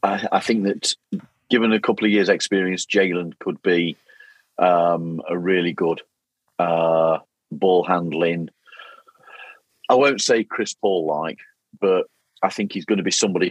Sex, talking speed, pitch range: male, 140 wpm, 85-95 Hz